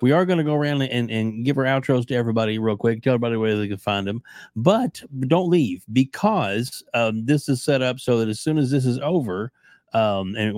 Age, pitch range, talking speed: 40-59, 100-130 Hz, 240 wpm